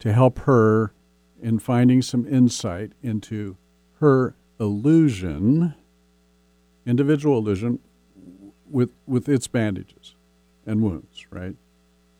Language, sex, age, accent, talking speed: English, male, 50-69, American, 95 wpm